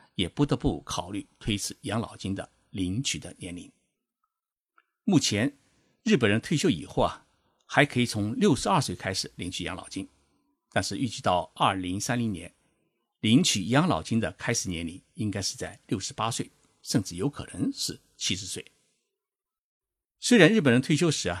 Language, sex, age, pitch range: Chinese, male, 50-69, 95-140 Hz